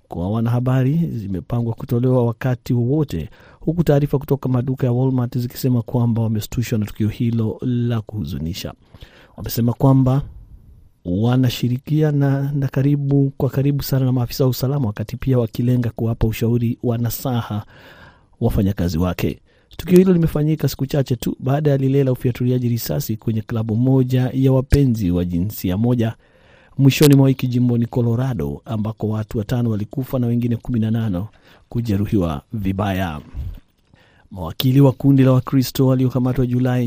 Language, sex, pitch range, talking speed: Swahili, male, 110-130 Hz, 135 wpm